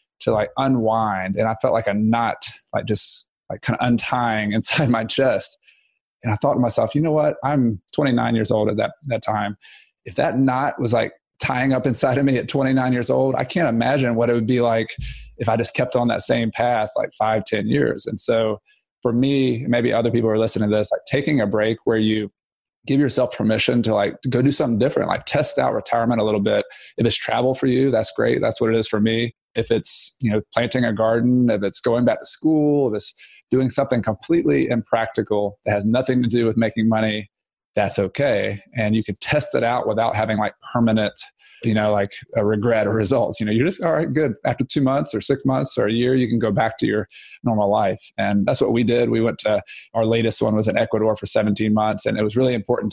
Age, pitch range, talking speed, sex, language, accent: 20-39, 110-125 Hz, 235 wpm, male, English, American